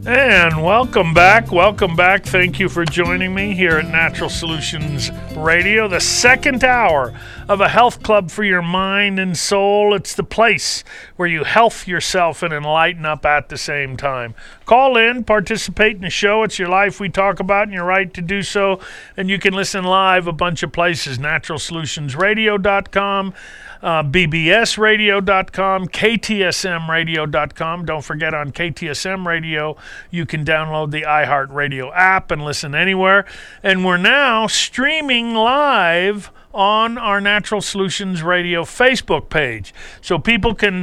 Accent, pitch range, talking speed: American, 160-200 Hz, 150 wpm